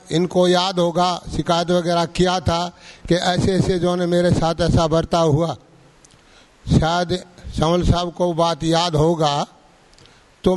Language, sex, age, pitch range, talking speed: English, male, 60-79, 165-185 Hz, 135 wpm